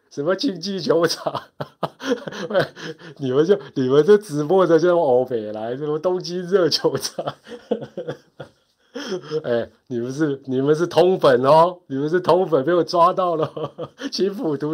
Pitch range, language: 120-180 Hz, Chinese